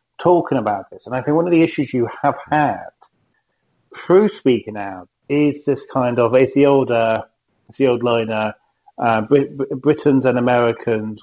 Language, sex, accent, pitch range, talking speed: English, male, British, 115-145 Hz, 180 wpm